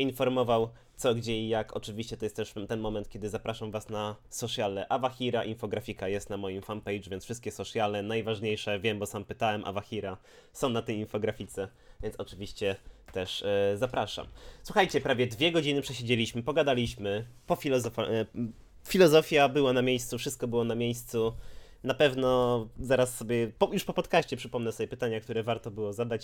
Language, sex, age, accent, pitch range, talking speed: Polish, male, 20-39, native, 100-125 Hz, 160 wpm